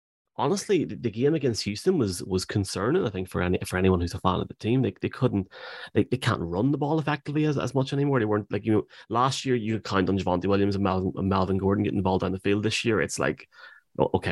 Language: English